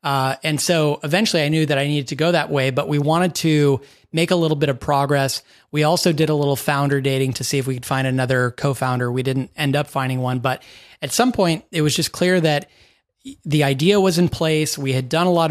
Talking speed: 245 wpm